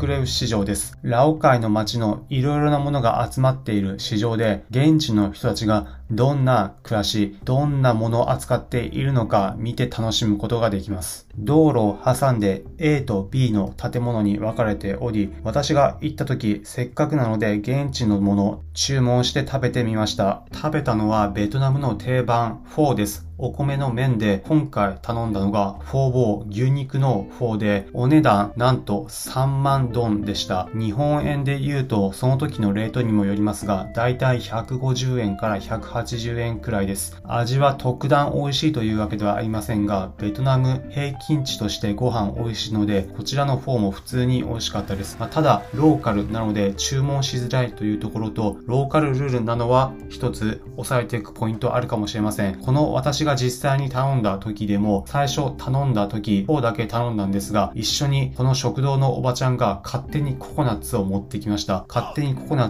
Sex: male